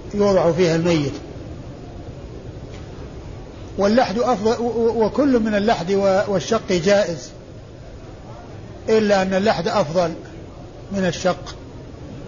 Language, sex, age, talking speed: Arabic, male, 50-69, 80 wpm